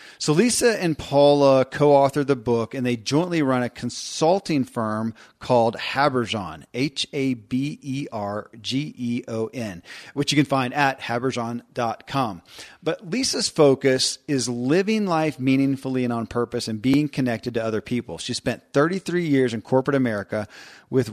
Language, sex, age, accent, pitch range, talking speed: English, male, 40-59, American, 115-140 Hz, 160 wpm